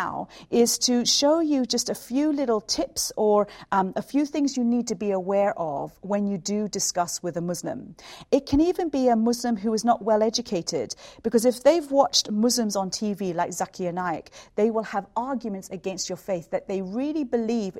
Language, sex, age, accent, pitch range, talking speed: English, female, 40-59, British, 190-245 Hz, 200 wpm